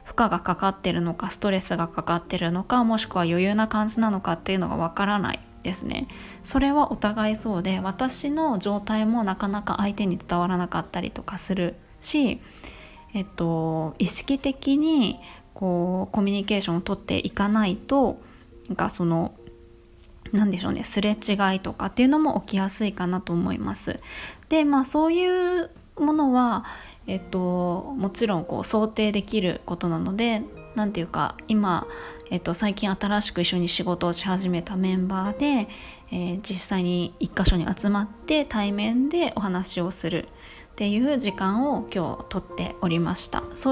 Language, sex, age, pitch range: Japanese, female, 20-39, 180-230 Hz